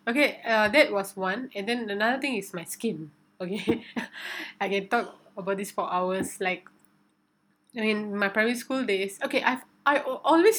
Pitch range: 185-225 Hz